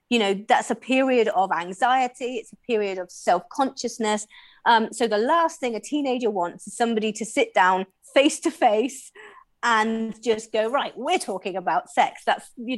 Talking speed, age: 165 wpm, 30-49